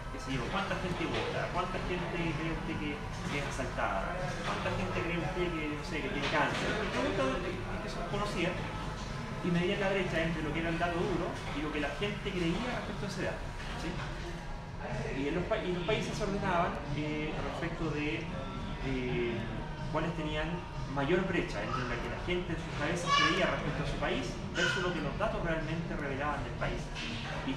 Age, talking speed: 30-49, 195 wpm